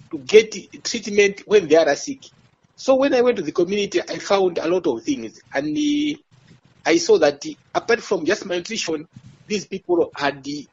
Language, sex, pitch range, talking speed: English, male, 155-245 Hz, 180 wpm